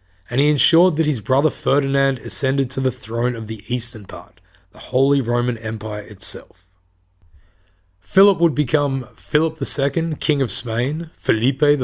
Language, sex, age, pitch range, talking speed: English, male, 30-49, 105-140 Hz, 145 wpm